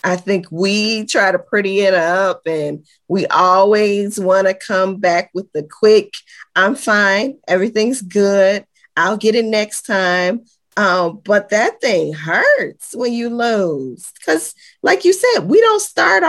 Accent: American